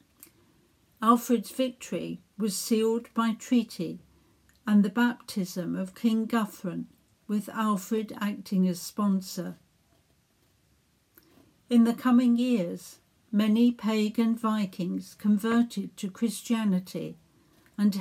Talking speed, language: 95 wpm, English